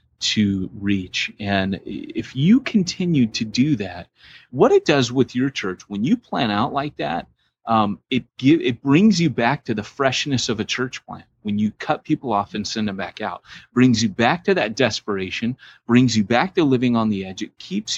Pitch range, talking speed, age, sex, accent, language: 105-140 Hz, 200 wpm, 30-49, male, American, English